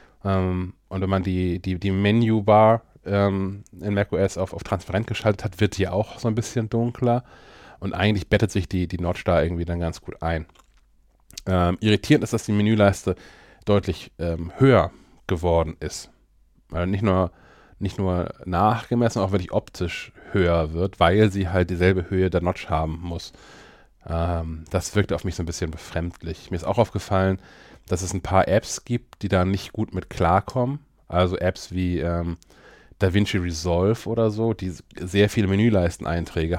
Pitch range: 90-105 Hz